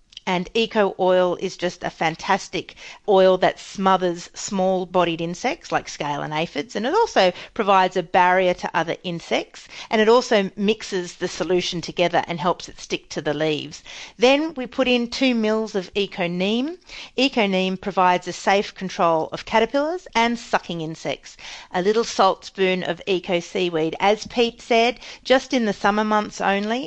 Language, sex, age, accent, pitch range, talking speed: English, female, 40-59, Australian, 170-215 Hz, 160 wpm